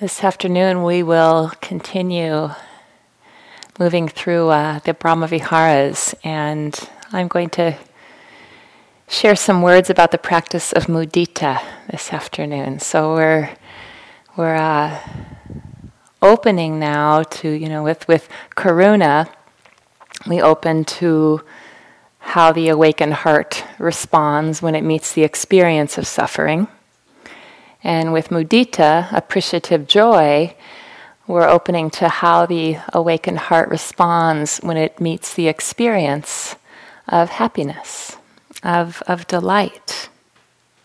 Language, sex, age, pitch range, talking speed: English, female, 40-59, 160-185 Hz, 110 wpm